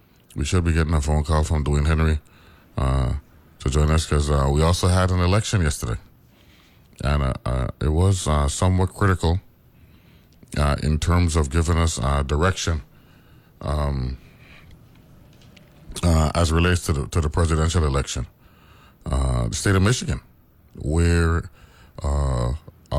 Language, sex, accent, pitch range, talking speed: English, male, American, 70-90 Hz, 140 wpm